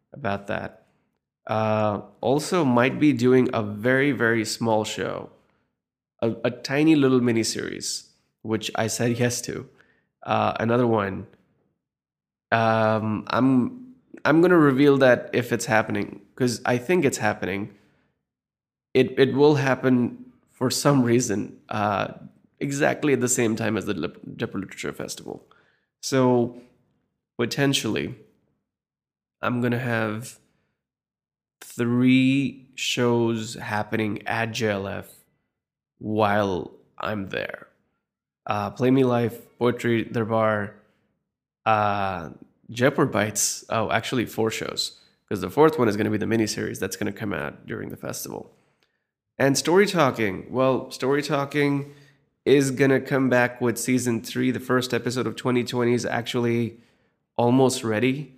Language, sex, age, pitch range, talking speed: English, male, 20-39, 110-130 Hz, 125 wpm